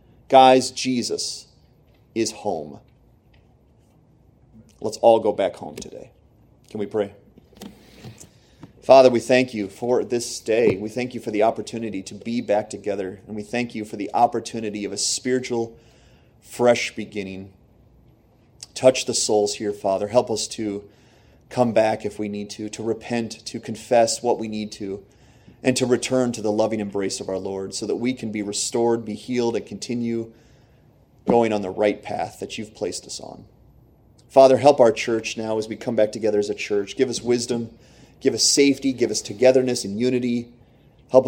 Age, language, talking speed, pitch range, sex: 30-49, English, 175 wpm, 105-120 Hz, male